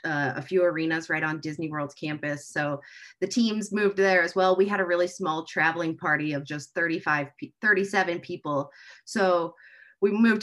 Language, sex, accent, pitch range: English, female, American, 150-190 Hz